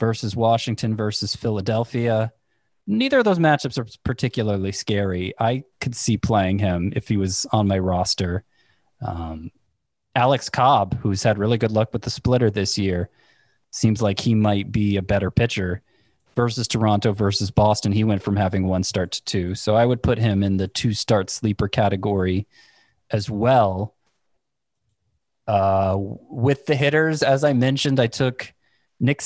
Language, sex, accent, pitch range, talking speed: English, male, American, 100-125 Hz, 160 wpm